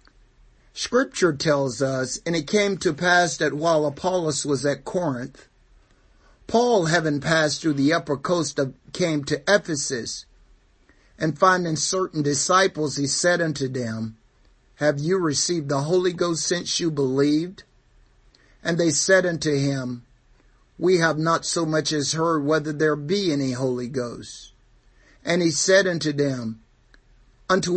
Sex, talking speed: male, 140 wpm